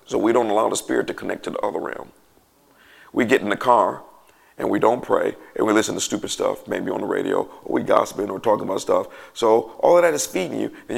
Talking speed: 250 wpm